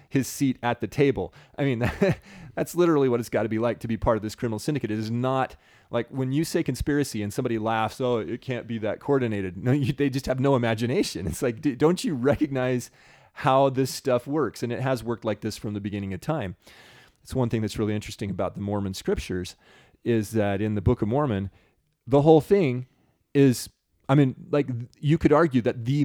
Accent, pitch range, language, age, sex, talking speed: American, 105-135 Hz, English, 30-49, male, 215 wpm